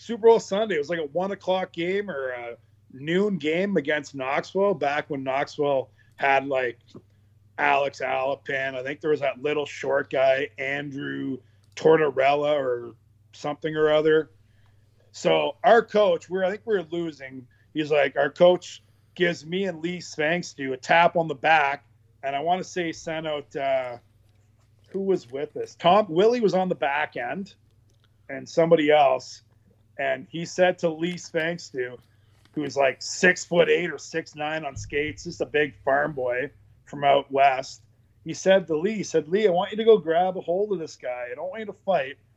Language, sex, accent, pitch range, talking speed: English, male, American, 125-175 Hz, 190 wpm